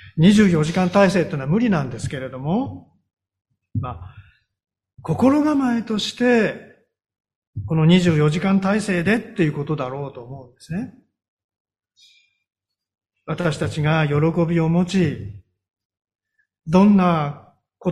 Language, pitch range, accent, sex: Japanese, 125-210 Hz, native, male